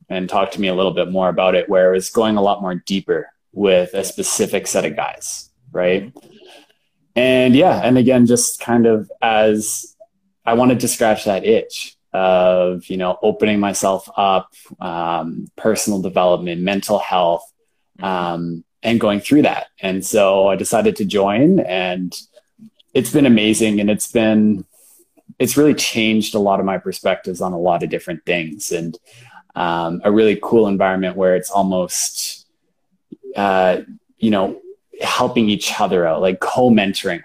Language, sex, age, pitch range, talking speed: English, male, 20-39, 90-115 Hz, 160 wpm